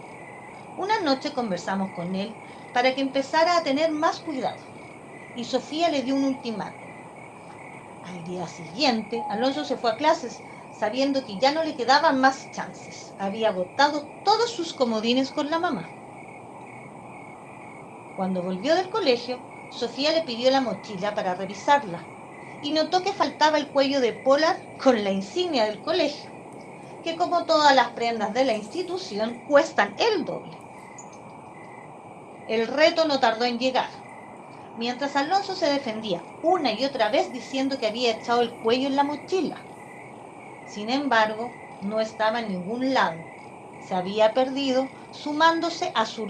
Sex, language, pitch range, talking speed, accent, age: female, Spanish, 220-300 Hz, 145 wpm, American, 40-59